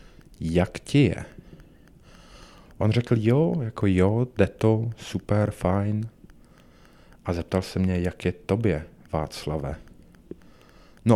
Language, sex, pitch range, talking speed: Czech, male, 85-105 Hz, 115 wpm